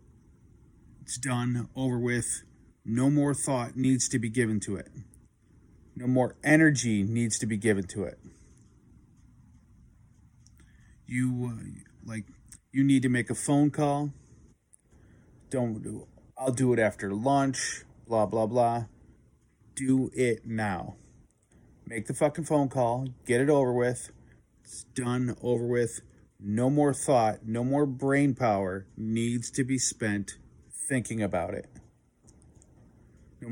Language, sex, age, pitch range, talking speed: English, male, 30-49, 110-130 Hz, 130 wpm